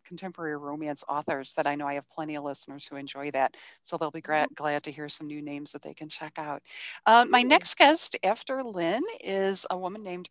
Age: 40-59